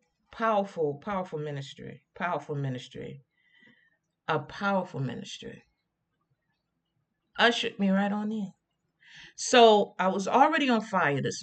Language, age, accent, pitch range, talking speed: English, 50-69, American, 150-205 Hz, 105 wpm